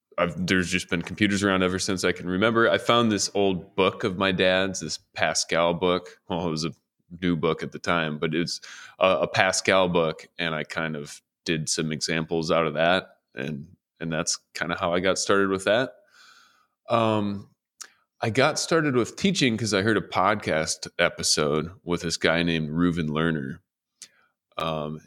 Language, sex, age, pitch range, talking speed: English, male, 20-39, 80-100 Hz, 185 wpm